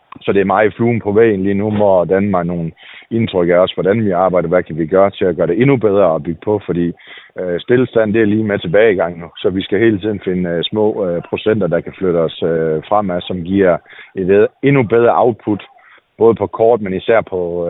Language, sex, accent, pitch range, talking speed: Danish, male, native, 85-110 Hz, 240 wpm